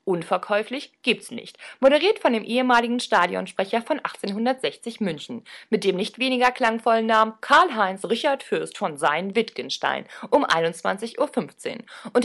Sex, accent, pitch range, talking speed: female, German, 180-255 Hz, 130 wpm